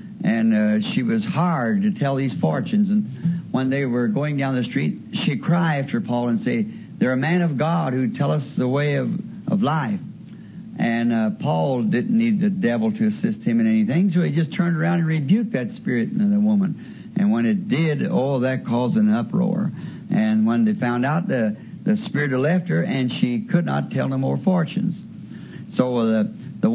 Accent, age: American, 60-79